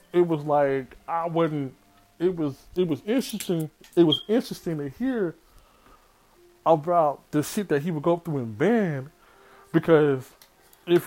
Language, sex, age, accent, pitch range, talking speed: English, male, 20-39, American, 140-195 Hz, 145 wpm